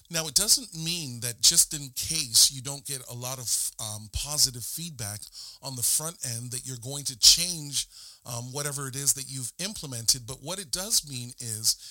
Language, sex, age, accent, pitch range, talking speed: English, male, 40-59, American, 120-155 Hz, 195 wpm